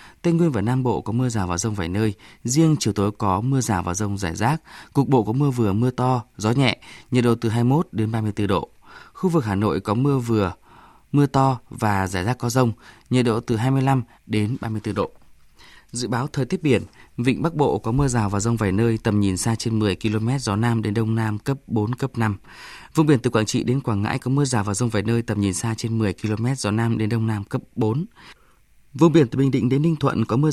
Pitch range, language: 105-130 Hz, Vietnamese